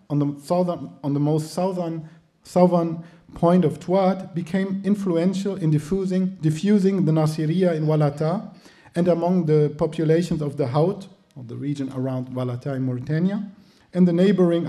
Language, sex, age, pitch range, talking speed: English, male, 50-69, 145-180 Hz, 150 wpm